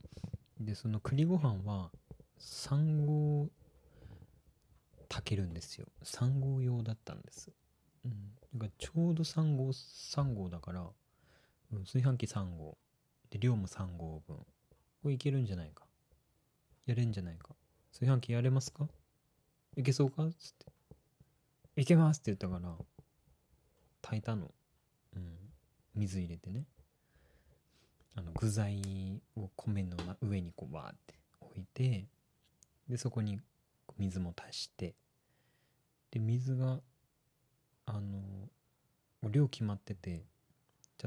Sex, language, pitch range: male, Japanese, 95-130 Hz